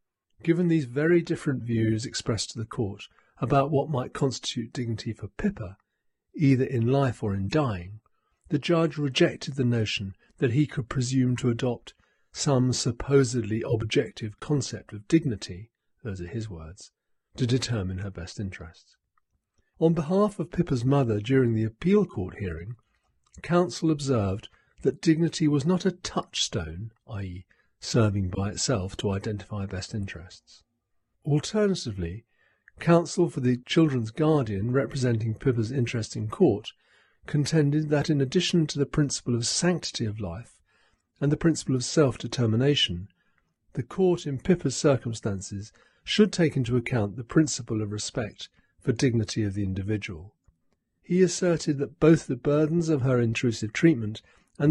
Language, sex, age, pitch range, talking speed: English, male, 50-69, 110-150 Hz, 145 wpm